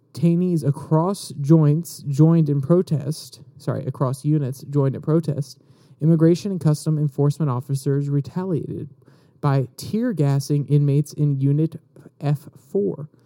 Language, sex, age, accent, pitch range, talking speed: English, male, 30-49, American, 140-160 Hz, 120 wpm